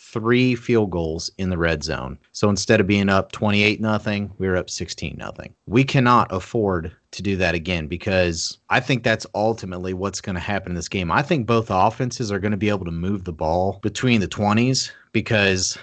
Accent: American